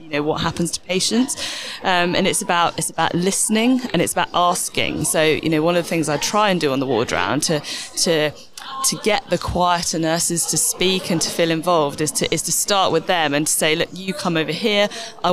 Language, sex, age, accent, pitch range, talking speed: English, female, 20-39, British, 150-180 Hz, 230 wpm